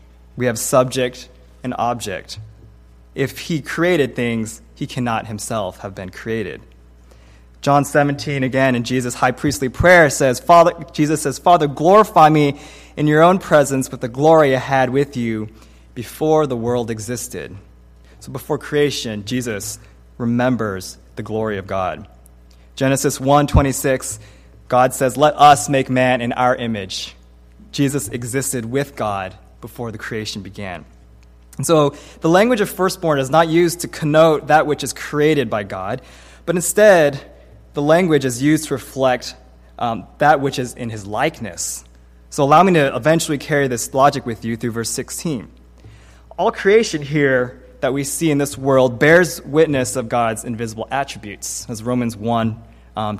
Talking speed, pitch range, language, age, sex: 155 wpm, 105-145 Hz, English, 20-39, male